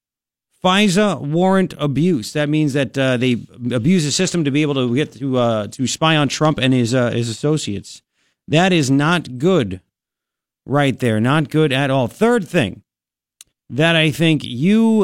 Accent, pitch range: American, 130-185 Hz